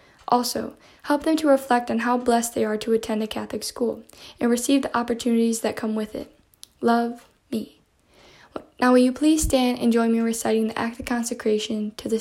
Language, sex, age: English, female, 10-29